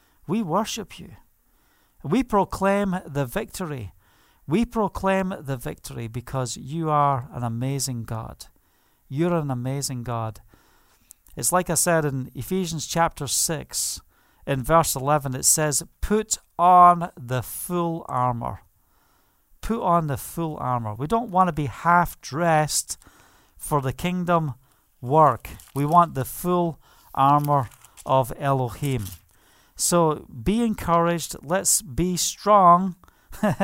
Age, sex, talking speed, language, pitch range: 50-69, male, 120 wpm, English, 140-195 Hz